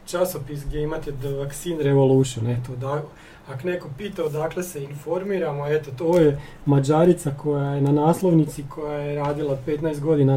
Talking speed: 155 wpm